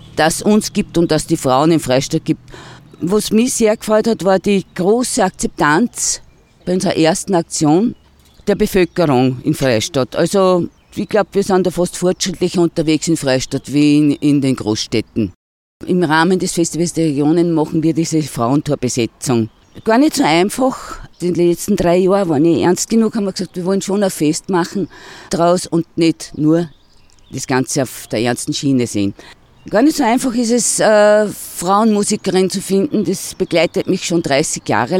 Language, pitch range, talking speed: German, 150-195 Hz, 175 wpm